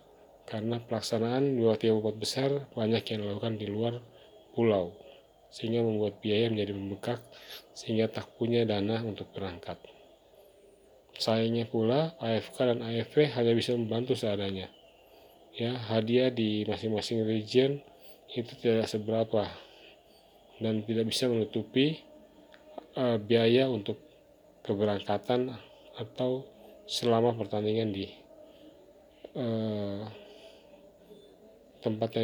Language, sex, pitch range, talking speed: Indonesian, male, 110-125 Hz, 100 wpm